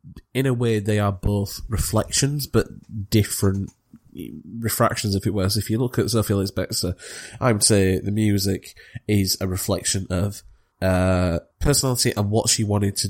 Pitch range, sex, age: 95-115 Hz, male, 20-39